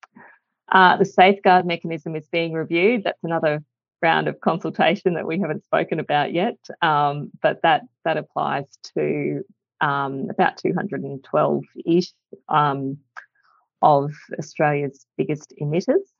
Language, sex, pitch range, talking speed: English, female, 130-165 Hz, 120 wpm